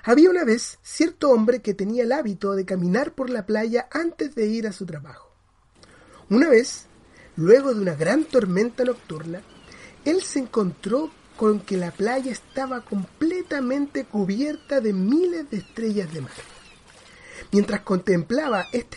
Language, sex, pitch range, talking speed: Spanish, male, 185-265 Hz, 150 wpm